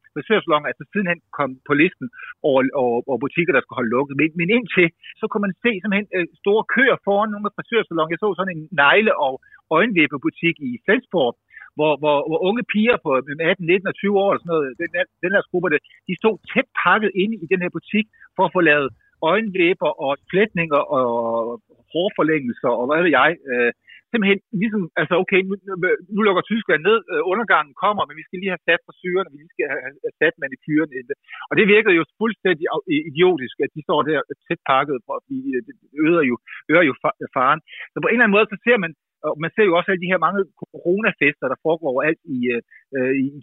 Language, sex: Danish, male